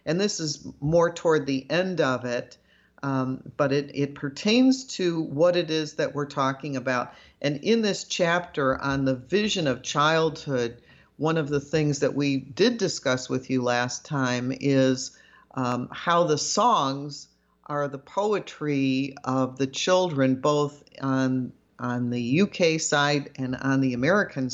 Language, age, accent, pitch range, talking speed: English, 50-69, American, 135-170 Hz, 155 wpm